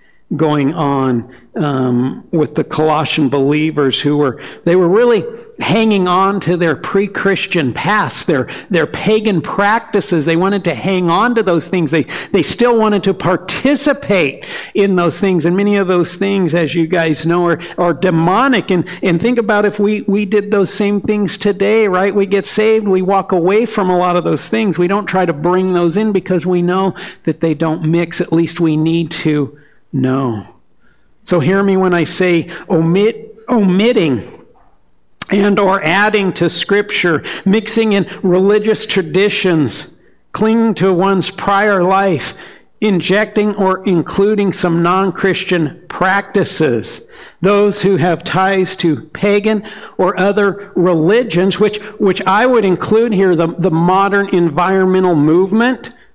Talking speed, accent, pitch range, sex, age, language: 155 wpm, American, 170-205 Hz, male, 50-69, English